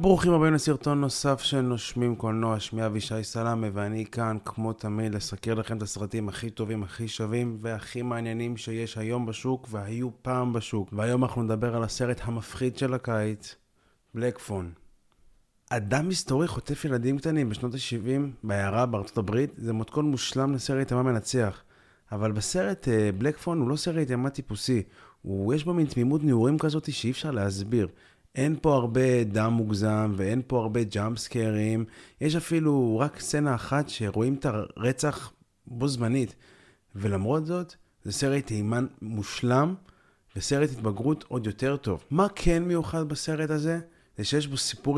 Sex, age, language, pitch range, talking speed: male, 20-39, Hebrew, 110-140 Hz, 150 wpm